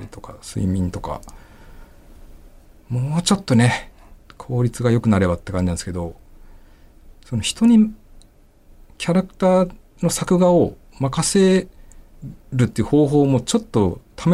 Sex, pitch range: male, 90-130 Hz